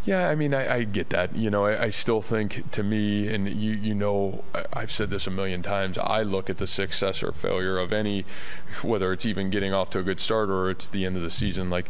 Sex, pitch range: male, 85-95 Hz